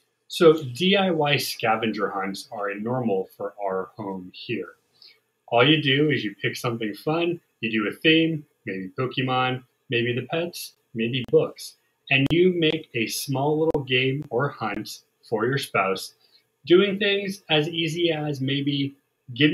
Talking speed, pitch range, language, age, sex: 150 wpm, 120-160 Hz, English, 30-49, male